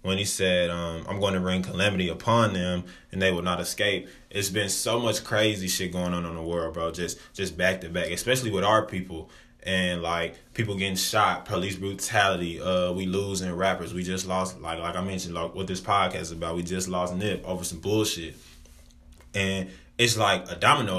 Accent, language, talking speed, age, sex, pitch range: American, English, 210 wpm, 20-39, male, 85-100 Hz